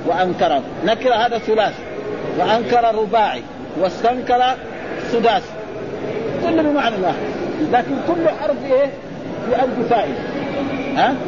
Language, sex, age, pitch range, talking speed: Arabic, male, 50-69, 195-250 Hz, 95 wpm